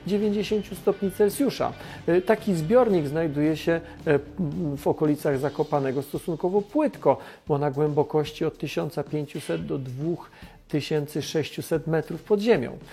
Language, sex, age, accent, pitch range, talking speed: Polish, male, 40-59, native, 150-190 Hz, 100 wpm